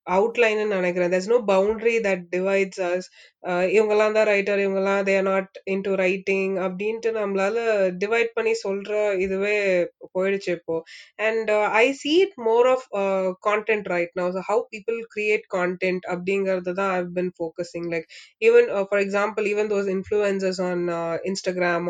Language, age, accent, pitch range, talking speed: Tamil, 20-39, native, 180-205 Hz, 155 wpm